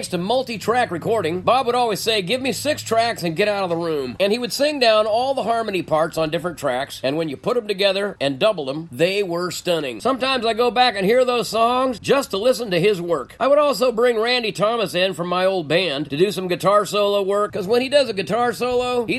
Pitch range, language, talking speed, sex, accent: 180-245 Hz, English, 250 wpm, male, American